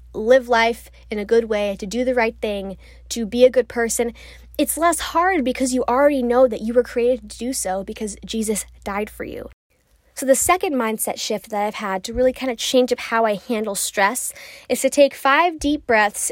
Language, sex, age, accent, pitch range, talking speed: English, female, 10-29, American, 210-255 Hz, 215 wpm